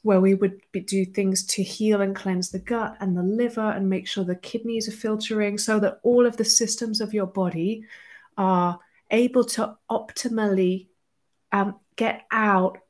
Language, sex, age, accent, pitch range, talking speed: English, female, 30-49, British, 175-220 Hz, 170 wpm